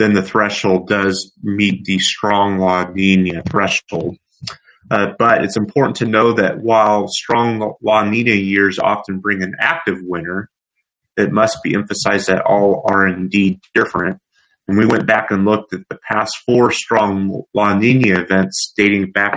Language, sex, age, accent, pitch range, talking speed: English, male, 30-49, American, 95-115 Hz, 160 wpm